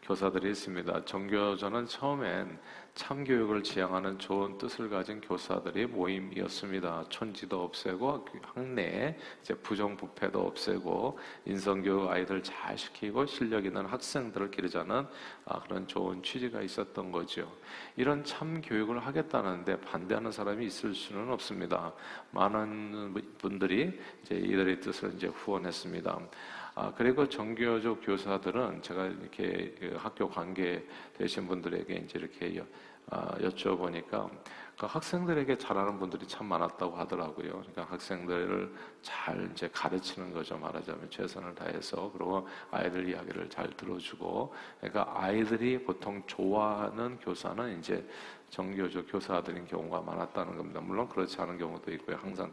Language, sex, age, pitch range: Korean, male, 40-59, 95-115 Hz